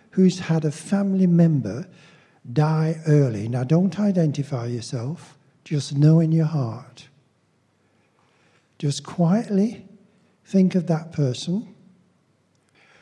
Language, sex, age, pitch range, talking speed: English, male, 60-79, 155-205 Hz, 100 wpm